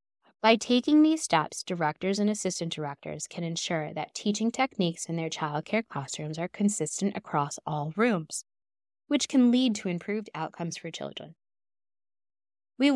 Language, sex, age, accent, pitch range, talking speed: English, female, 20-39, American, 160-210 Hz, 145 wpm